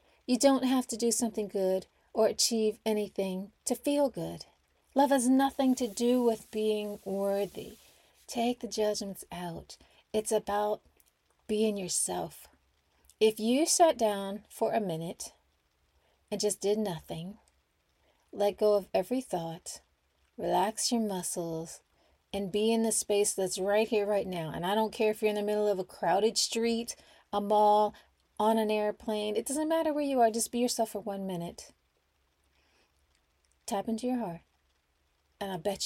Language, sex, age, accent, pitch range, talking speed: English, female, 30-49, American, 180-225 Hz, 160 wpm